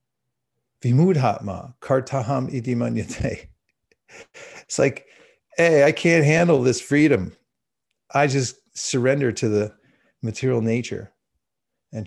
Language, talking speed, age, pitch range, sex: English, 95 wpm, 50-69, 115-155 Hz, male